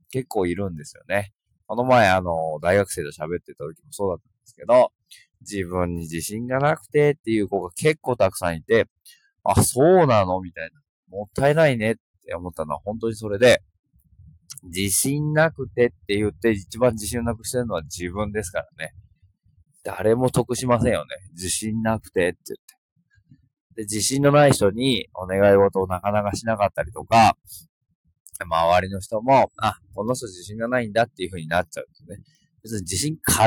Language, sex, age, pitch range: Japanese, male, 20-39, 95-125 Hz